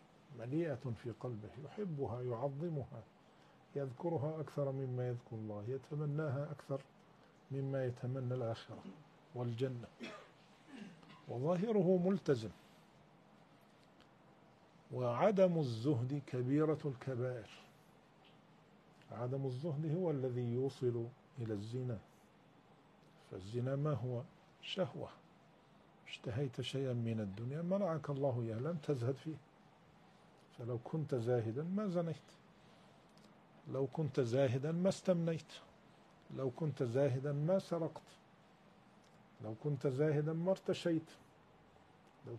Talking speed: 90 wpm